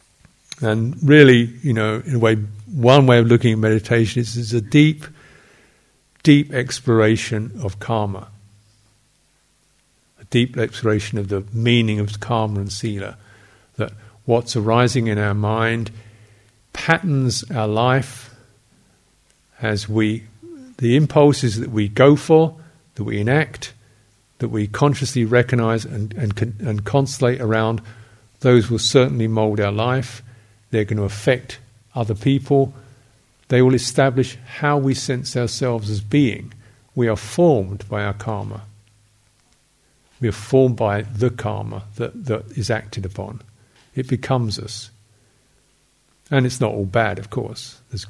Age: 50-69